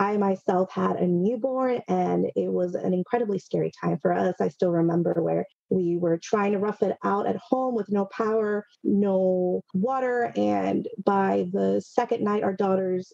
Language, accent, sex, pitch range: English, American, female, 185-220 Hz